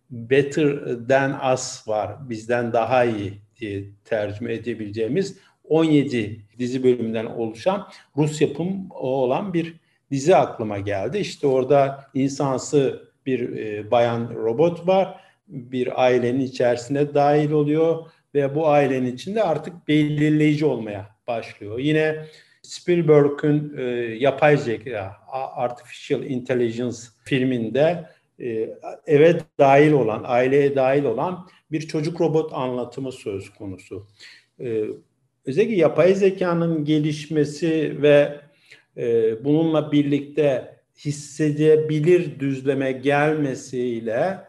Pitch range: 125-155 Hz